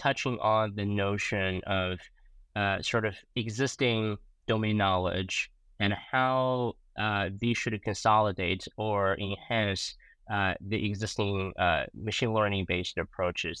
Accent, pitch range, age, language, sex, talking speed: American, 95-120 Hz, 20-39, English, male, 120 wpm